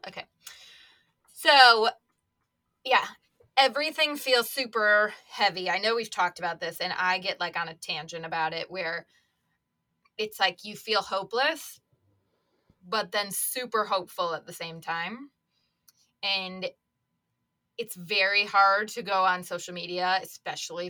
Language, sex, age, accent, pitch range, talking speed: English, female, 20-39, American, 180-220 Hz, 130 wpm